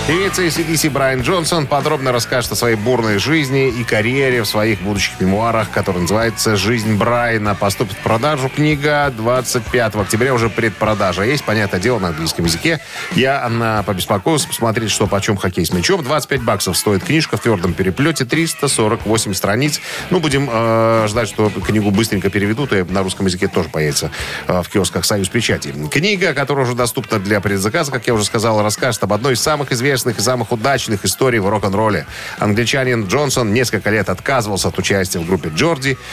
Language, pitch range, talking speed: Russian, 100-135 Hz, 170 wpm